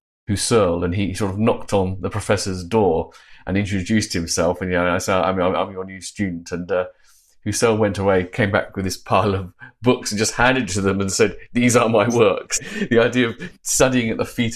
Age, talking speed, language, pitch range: 30-49, 225 wpm, English, 95-120 Hz